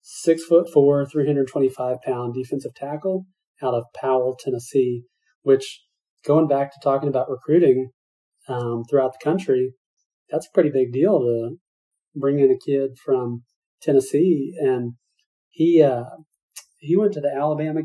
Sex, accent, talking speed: male, American, 155 wpm